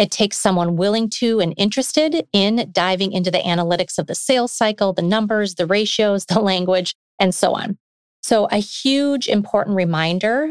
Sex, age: female, 30-49